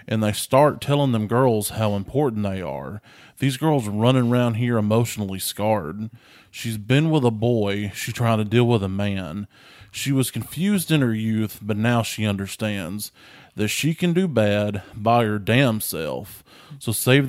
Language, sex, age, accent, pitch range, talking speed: English, male, 20-39, American, 105-125 Hz, 175 wpm